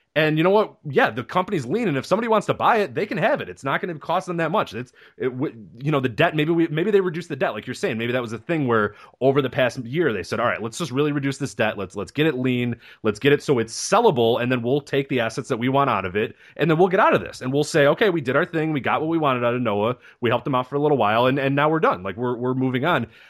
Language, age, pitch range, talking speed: English, 30-49, 115-155 Hz, 325 wpm